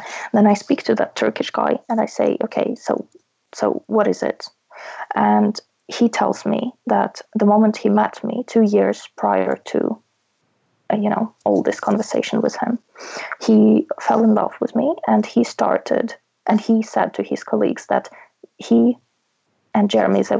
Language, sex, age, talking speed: English, female, 20-39, 165 wpm